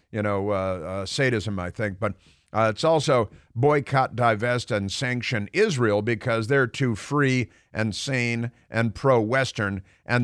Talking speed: 150 wpm